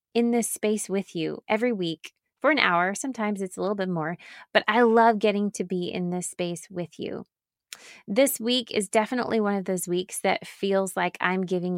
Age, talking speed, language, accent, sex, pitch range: 20-39, 205 wpm, English, American, female, 175-210 Hz